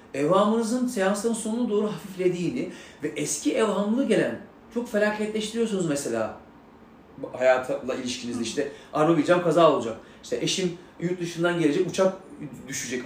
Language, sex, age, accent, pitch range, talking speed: Turkish, male, 40-59, native, 170-240 Hz, 115 wpm